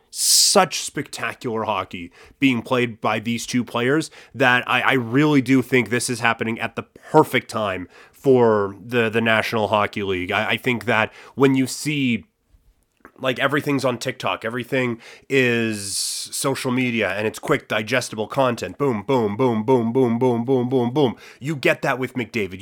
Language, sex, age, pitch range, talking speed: English, male, 30-49, 115-140 Hz, 165 wpm